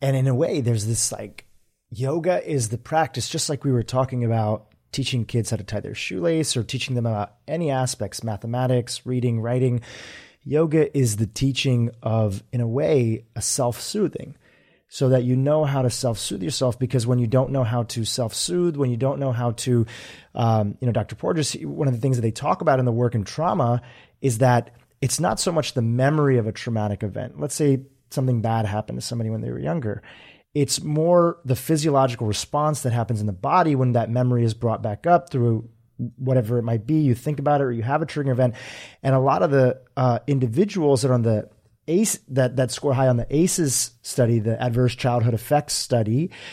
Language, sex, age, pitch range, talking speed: English, male, 30-49, 115-140 Hz, 210 wpm